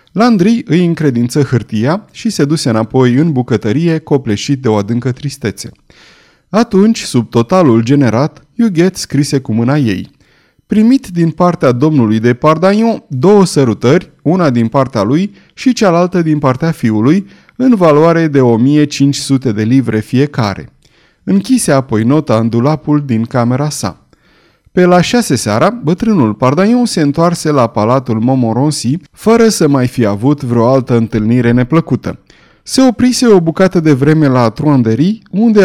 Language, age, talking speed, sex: Romanian, 30-49, 145 wpm, male